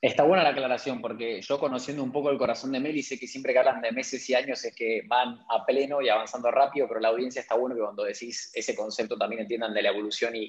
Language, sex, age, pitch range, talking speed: Spanish, male, 20-39, 125-175 Hz, 265 wpm